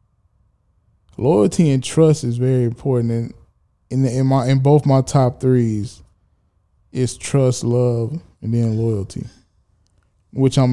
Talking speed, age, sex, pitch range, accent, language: 135 wpm, 10-29, male, 100-135 Hz, American, English